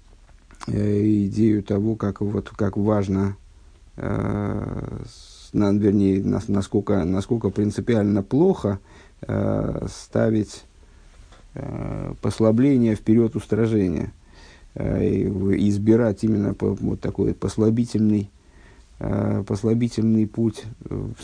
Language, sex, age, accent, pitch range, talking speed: Russian, male, 50-69, native, 100-125 Hz, 95 wpm